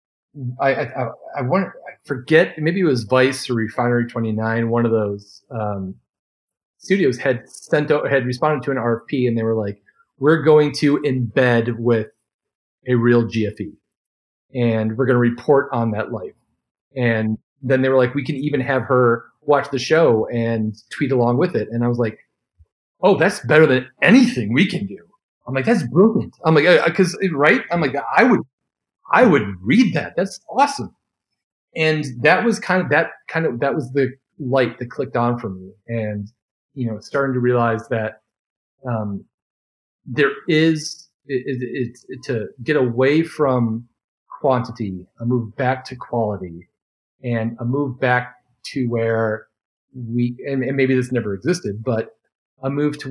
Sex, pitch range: male, 115-145 Hz